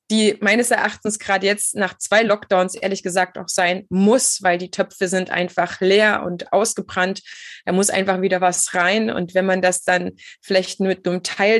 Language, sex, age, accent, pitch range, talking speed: German, female, 20-39, German, 190-235 Hz, 190 wpm